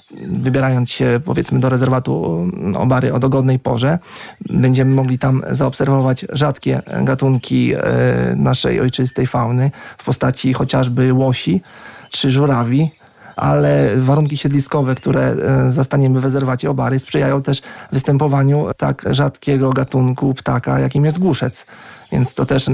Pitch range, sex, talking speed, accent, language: 130-145 Hz, male, 120 wpm, native, Polish